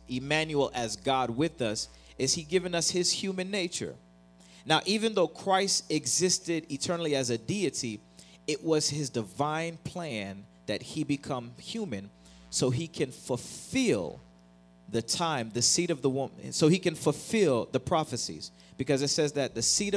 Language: English